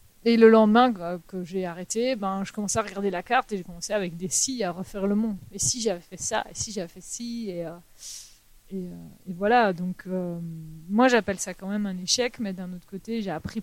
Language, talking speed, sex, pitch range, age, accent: French, 230 wpm, female, 180-220 Hz, 30-49, French